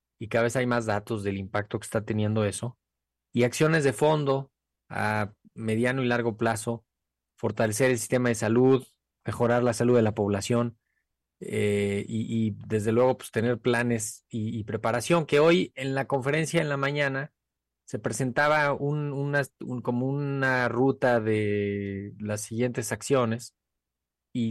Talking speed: 155 wpm